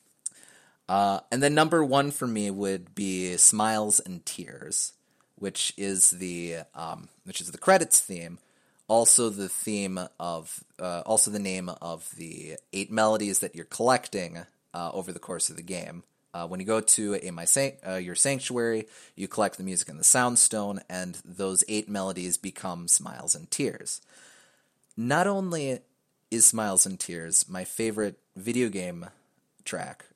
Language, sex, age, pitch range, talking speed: English, male, 30-49, 90-115 Hz, 160 wpm